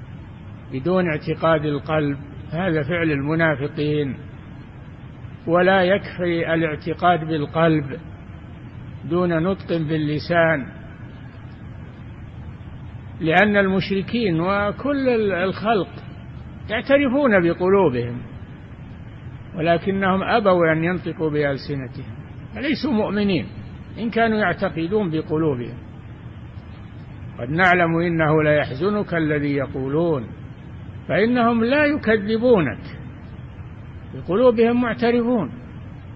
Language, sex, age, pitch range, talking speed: Arabic, male, 60-79, 130-185 Hz, 70 wpm